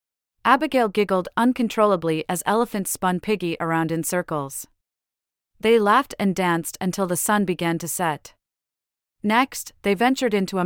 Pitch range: 170-215 Hz